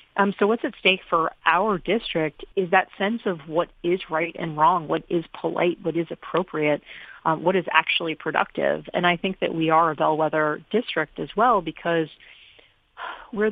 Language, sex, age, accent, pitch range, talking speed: English, female, 40-59, American, 160-190 Hz, 180 wpm